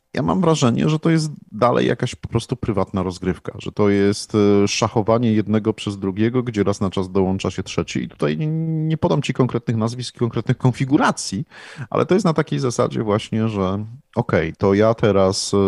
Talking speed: 180 wpm